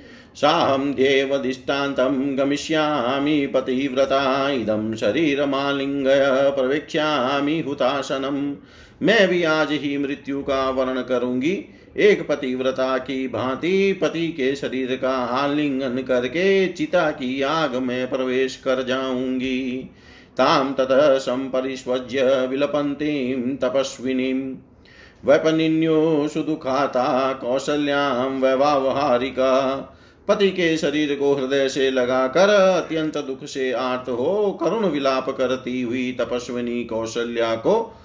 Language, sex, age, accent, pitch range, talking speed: Hindi, male, 50-69, native, 130-145 Hz, 95 wpm